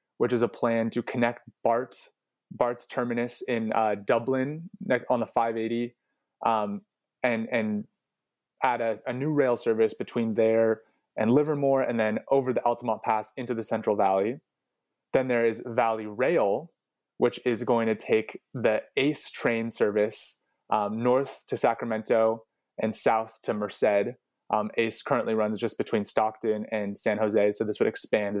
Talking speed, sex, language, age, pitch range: 160 wpm, male, English, 20-39, 110-125 Hz